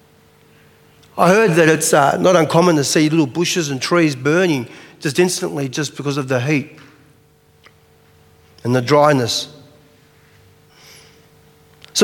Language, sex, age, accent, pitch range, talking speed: English, male, 40-59, Australian, 135-185 Hz, 125 wpm